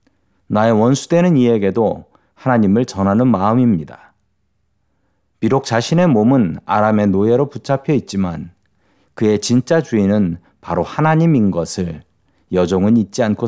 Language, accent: Korean, native